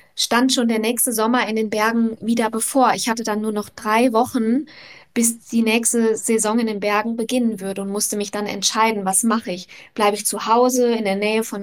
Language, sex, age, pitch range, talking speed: German, female, 20-39, 205-240 Hz, 215 wpm